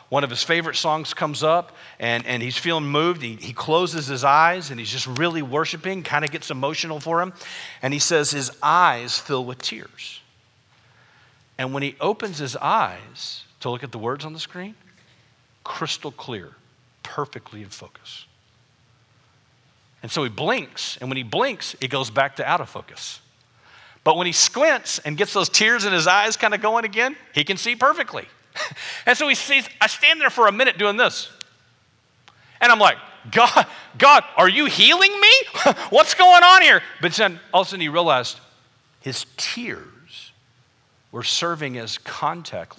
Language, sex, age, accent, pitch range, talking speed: English, male, 50-69, American, 120-175 Hz, 180 wpm